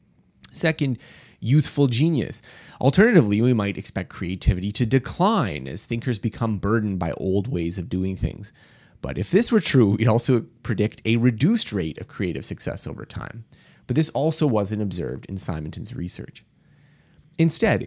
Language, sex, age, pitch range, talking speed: English, male, 30-49, 95-130 Hz, 150 wpm